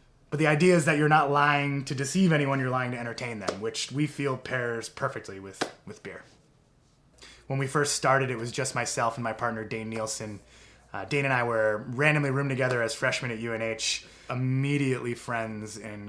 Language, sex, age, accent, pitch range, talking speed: English, male, 20-39, American, 115-140 Hz, 195 wpm